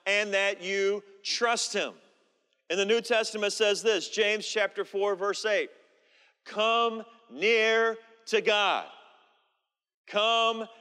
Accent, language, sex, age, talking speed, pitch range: American, English, male, 40-59, 115 wpm, 195-230 Hz